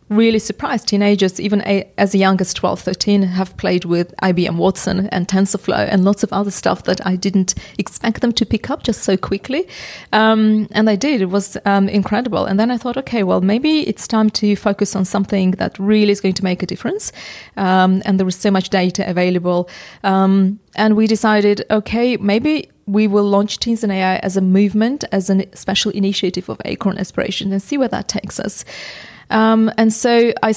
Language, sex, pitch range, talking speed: English, female, 190-215 Hz, 200 wpm